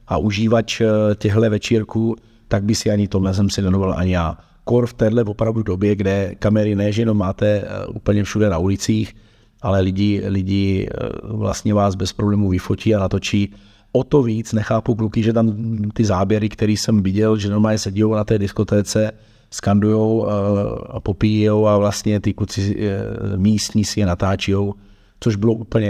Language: Czech